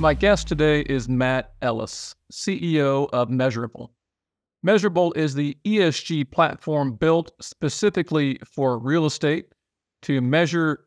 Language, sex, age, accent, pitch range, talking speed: English, male, 40-59, American, 135-170 Hz, 115 wpm